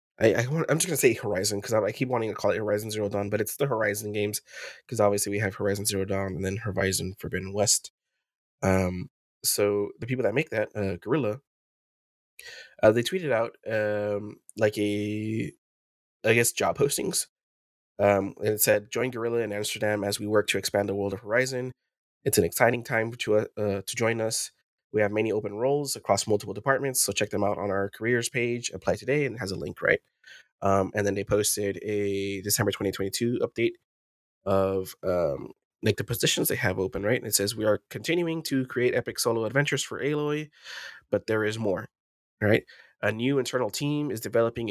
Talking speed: 190 wpm